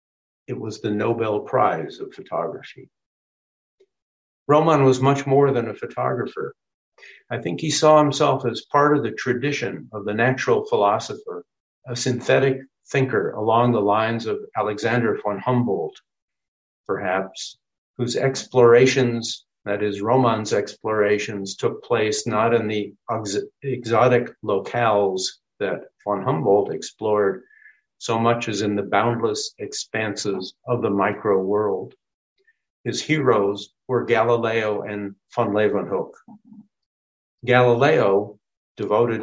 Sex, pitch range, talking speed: male, 105-140 Hz, 115 wpm